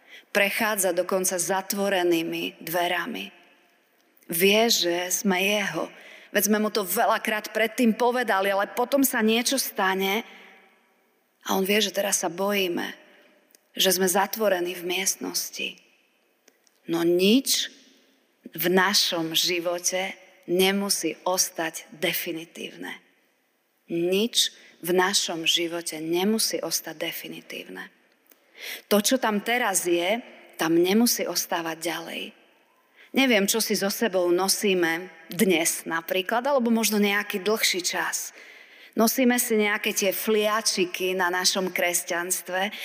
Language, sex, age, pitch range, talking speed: Slovak, female, 30-49, 180-230 Hz, 110 wpm